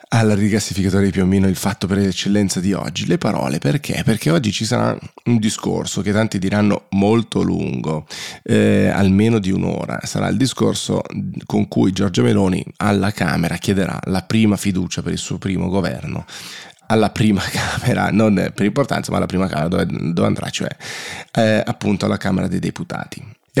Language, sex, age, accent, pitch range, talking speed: Italian, male, 30-49, native, 95-110 Hz, 175 wpm